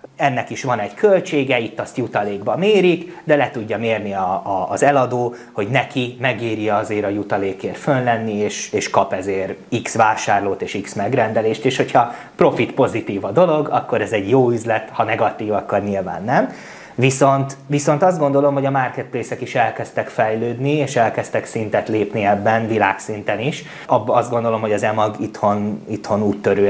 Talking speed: 170 wpm